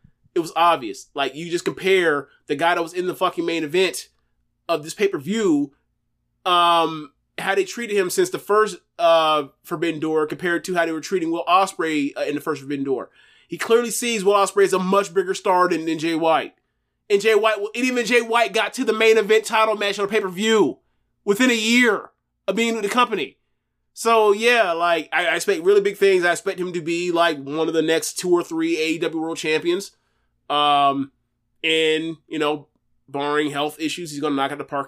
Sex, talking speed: male, 215 wpm